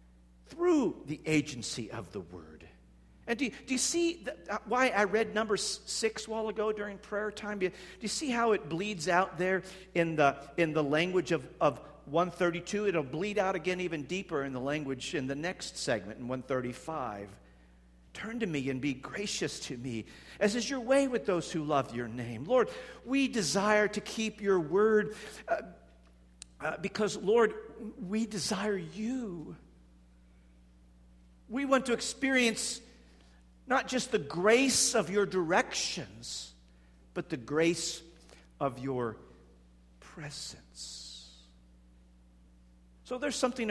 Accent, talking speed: American, 150 wpm